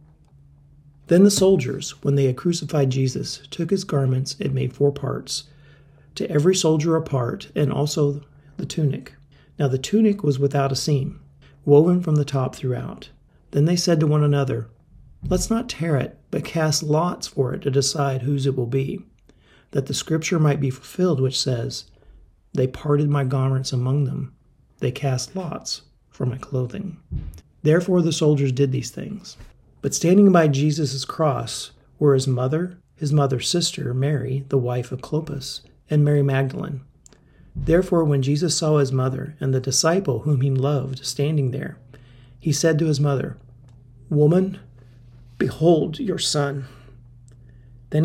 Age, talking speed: 40-59, 155 wpm